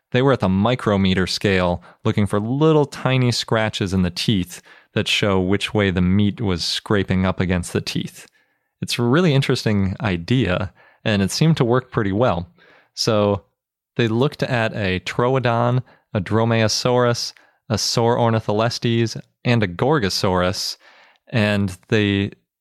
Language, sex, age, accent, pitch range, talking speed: English, male, 30-49, American, 95-120 Hz, 140 wpm